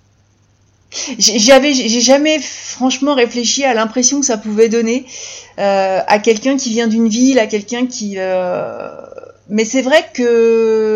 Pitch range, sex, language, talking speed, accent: 180-260 Hz, female, French, 135 wpm, French